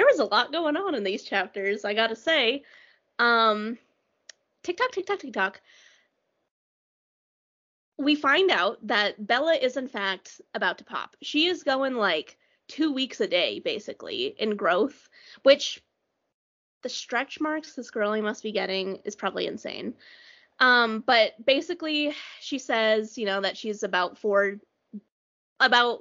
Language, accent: English, American